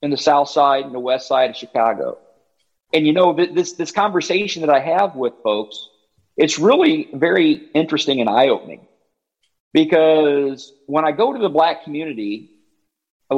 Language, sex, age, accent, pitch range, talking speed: English, male, 50-69, American, 130-180 Hz, 160 wpm